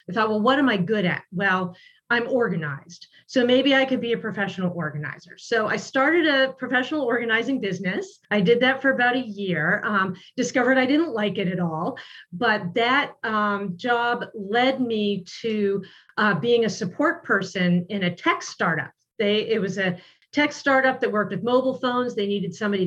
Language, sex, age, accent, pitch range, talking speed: English, female, 40-59, American, 190-245 Hz, 185 wpm